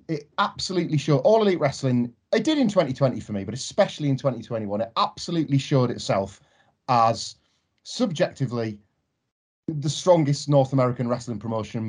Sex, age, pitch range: male, 30-49, 115-145 Hz